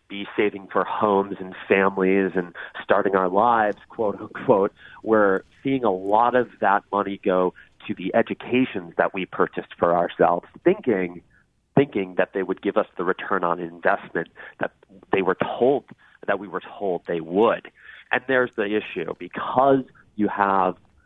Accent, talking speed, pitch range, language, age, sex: American, 155 wpm, 95-115 Hz, English, 30-49, male